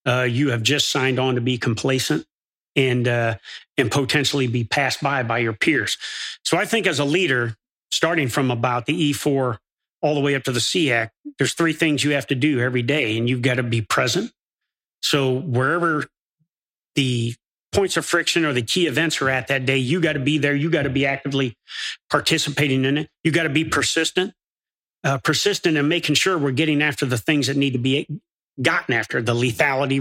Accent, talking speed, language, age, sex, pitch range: American, 205 wpm, English, 40-59, male, 125-155 Hz